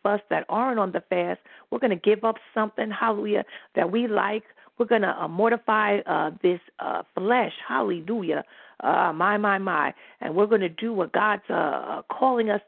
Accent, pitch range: American, 165-225 Hz